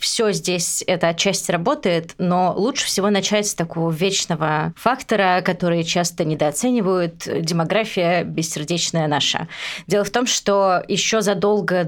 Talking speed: 125 wpm